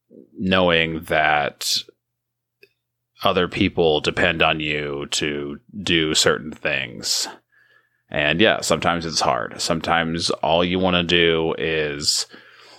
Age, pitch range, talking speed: 30-49, 75-90 Hz, 110 wpm